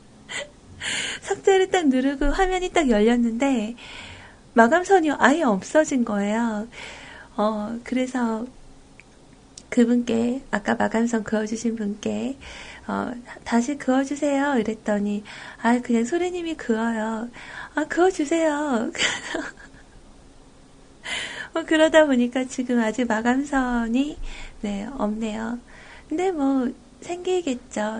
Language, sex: Korean, female